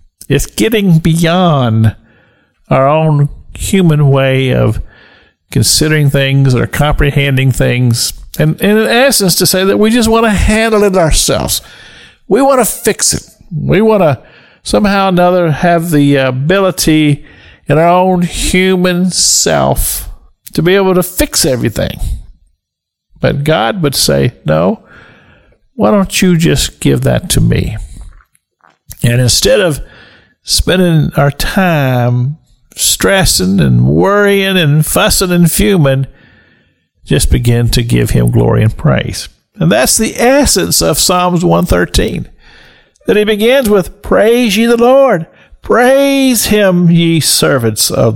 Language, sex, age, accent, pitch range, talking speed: English, male, 50-69, American, 130-205 Hz, 130 wpm